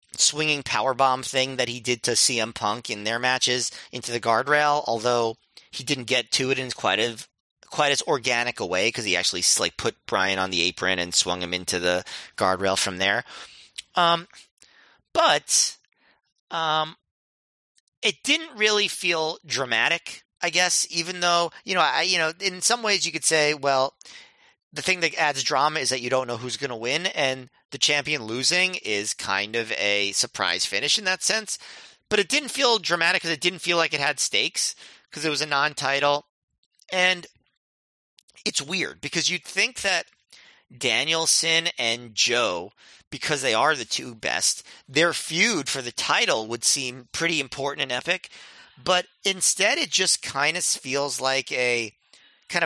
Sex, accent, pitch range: male, American, 120-165 Hz